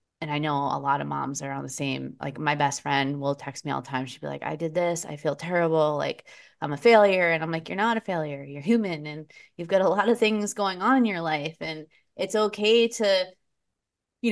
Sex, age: female, 20-39